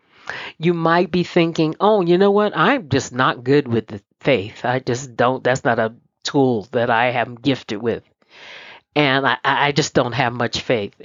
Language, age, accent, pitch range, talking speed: English, 40-59, American, 145-185 Hz, 190 wpm